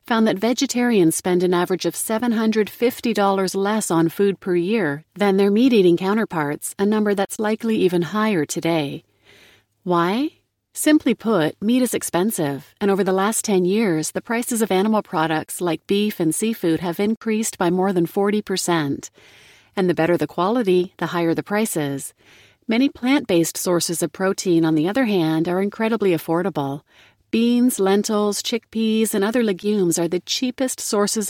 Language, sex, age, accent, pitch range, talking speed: English, female, 40-59, American, 170-220 Hz, 155 wpm